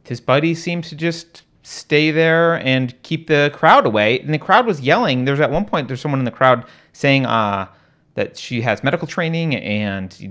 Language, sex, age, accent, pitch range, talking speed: English, male, 30-49, American, 110-150 Hz, 205 wpm